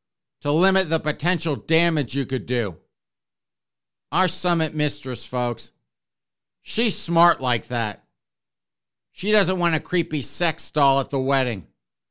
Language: English